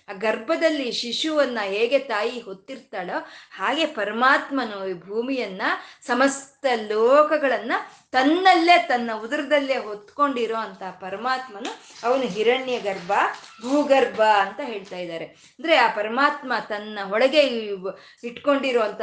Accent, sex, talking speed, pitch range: native, female, 95 wpm, 215-280 Hz